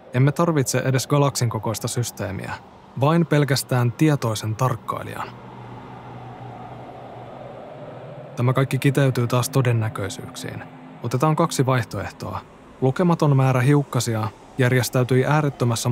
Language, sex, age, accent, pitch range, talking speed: Finnish, male, 20-39, native, 115-135 Hz, 85 wpm